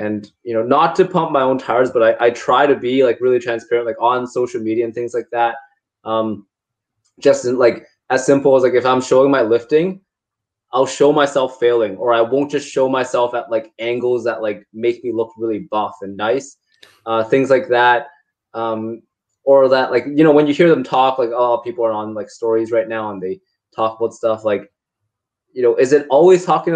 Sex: male